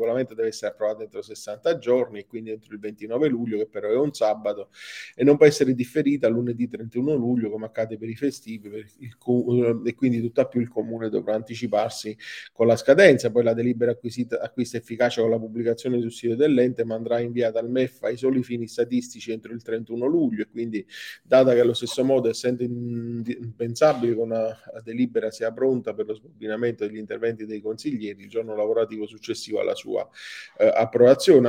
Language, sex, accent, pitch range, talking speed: Italian, male, native, 110-125 Hz, 190 wpm